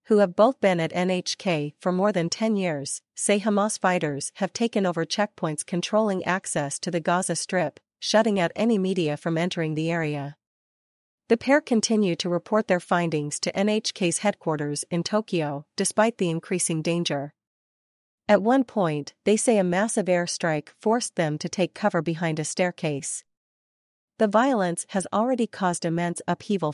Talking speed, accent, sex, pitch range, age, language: 160 wpm, American, female, 160-205 Hz, 40-59, English